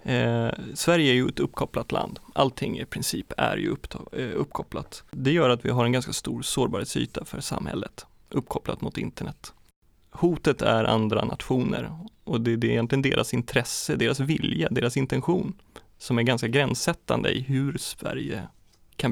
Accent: Swedish